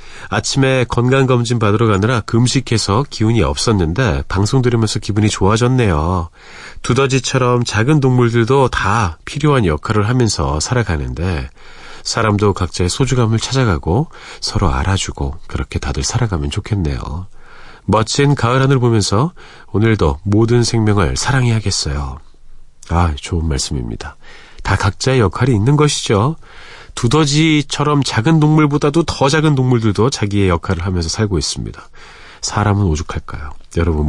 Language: Korean